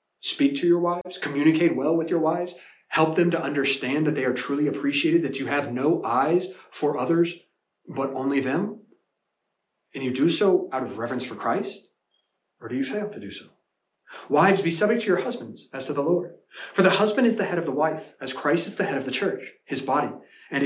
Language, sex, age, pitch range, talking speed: English, male, 30-49, 140-185 Hz, 215 wpm